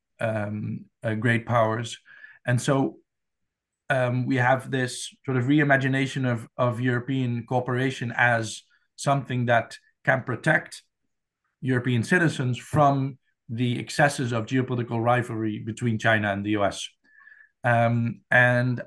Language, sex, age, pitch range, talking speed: Finnish, male, 50-69, 115-135 Hz, 120 wpm